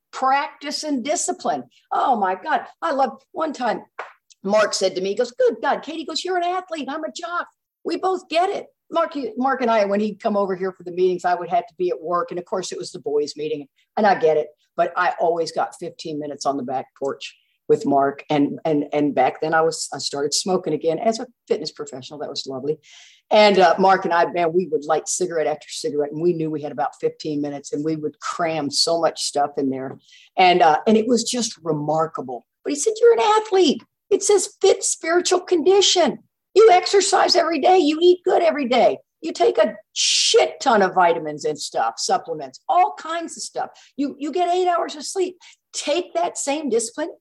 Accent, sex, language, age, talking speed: American, female, English, 50-69, 220 wpm